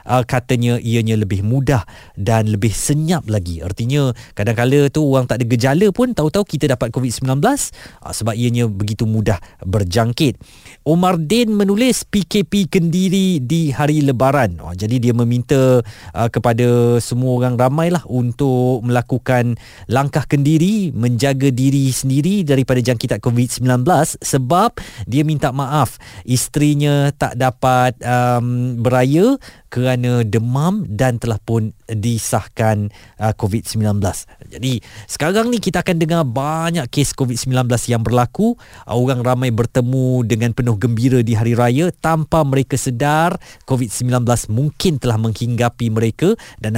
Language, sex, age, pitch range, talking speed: Malay, male, 20-39, 115-150 Hz, 125 wpm